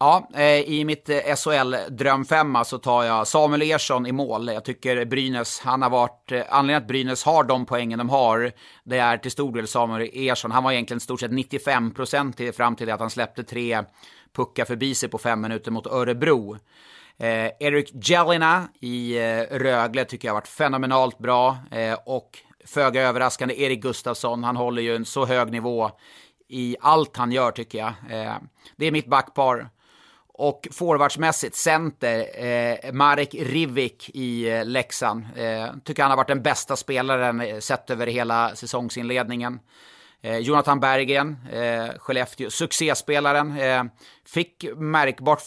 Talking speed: 155 wpm